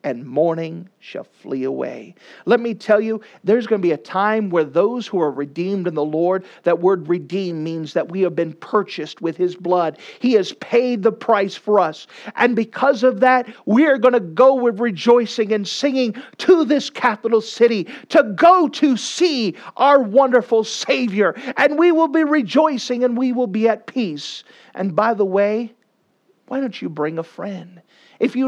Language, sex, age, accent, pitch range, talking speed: English, male, 50-69, American, 185-250 Hz, 190 wpm